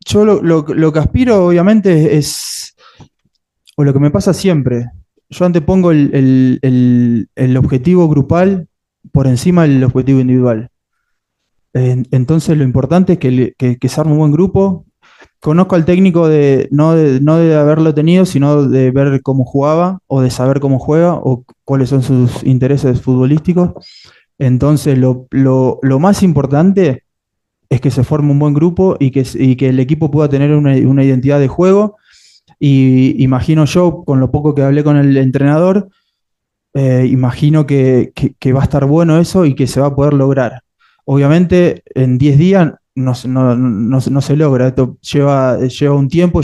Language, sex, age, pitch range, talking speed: Spanish, male, 20-39, 130-160 Hz, 175 wpm